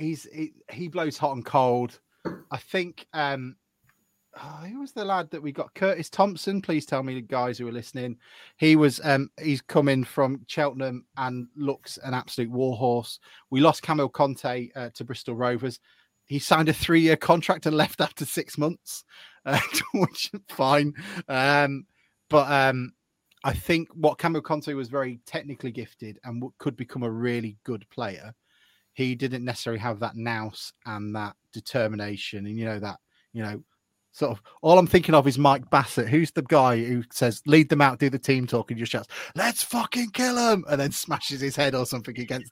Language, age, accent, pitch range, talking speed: English, 30-49, British, 120-155 Hz, 185 wpm